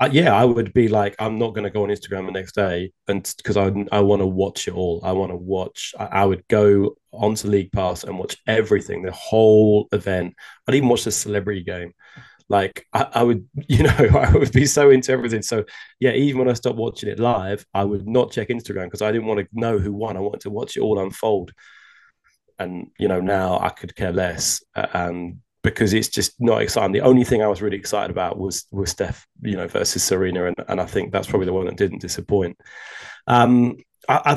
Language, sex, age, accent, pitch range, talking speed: English, male, 20-39, British, 95-120 Hz, 230 wpm